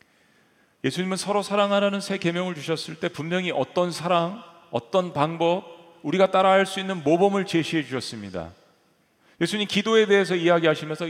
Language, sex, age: Korean, male, 40-59